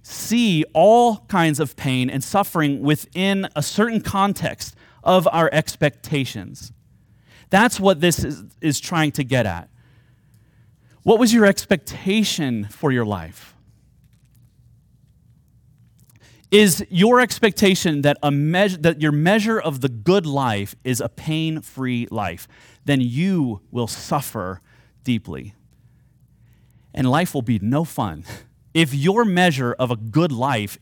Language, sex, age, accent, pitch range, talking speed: English, male, 30-49, American, 120-180 Hz, 125 wpm